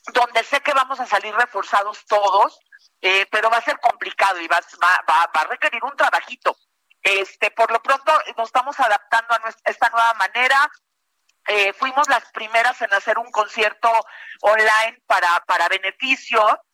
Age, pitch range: 40-59, 215-265 Hz